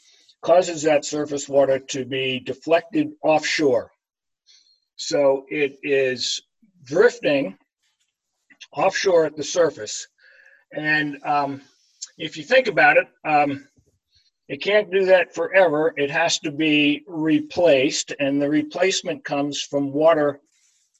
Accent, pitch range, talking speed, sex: American, 140-165 Hz, 115 wpm, male